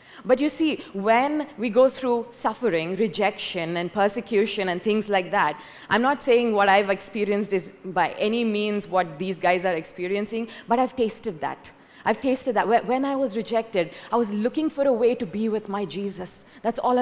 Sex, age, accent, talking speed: female, 20-39, Indian, 190 wpm